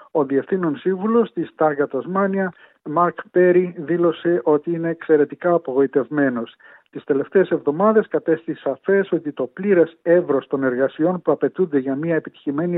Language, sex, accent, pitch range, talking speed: Greek, male, native, 140-175 Hz, 135 wpm